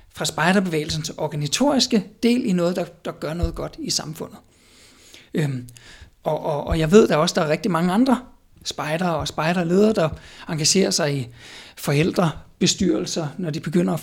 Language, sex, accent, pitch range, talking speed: Danish, male, native, 160-220 Hz, 165 wpm